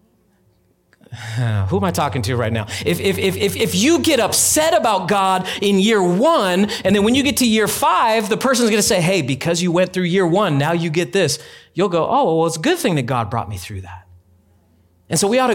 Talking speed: 230 wpm